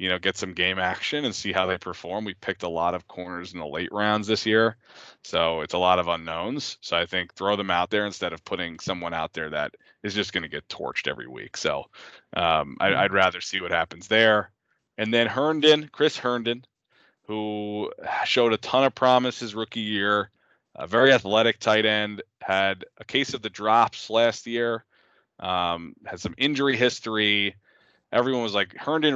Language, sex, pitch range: English, male, 95-115 Hz